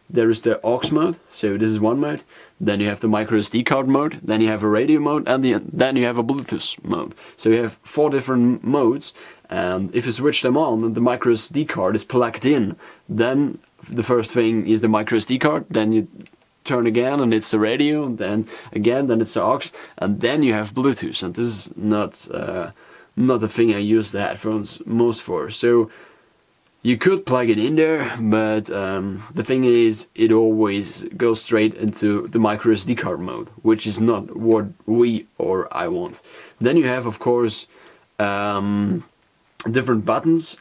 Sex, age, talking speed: male, 30-49, 195 wpm